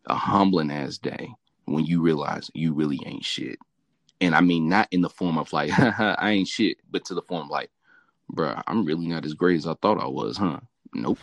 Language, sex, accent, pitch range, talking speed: English, male, American, 80-100 Hz, 225 wpm